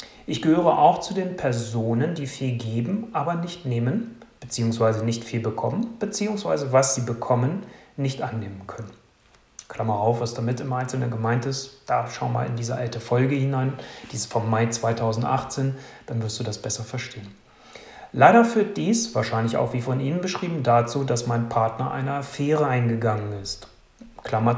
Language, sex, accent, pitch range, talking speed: German, male, German, 115-135 Hz, 165 wpm